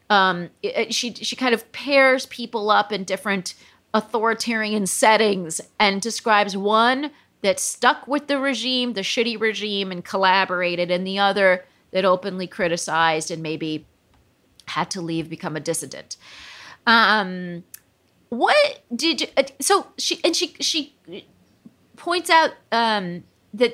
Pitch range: 185-270 Hz